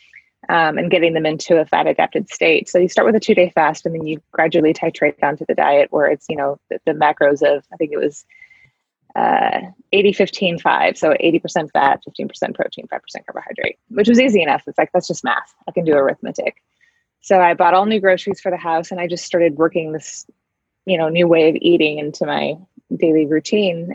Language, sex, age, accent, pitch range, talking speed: English, female, 20-39, American, 160-200 Hz, 215 wpm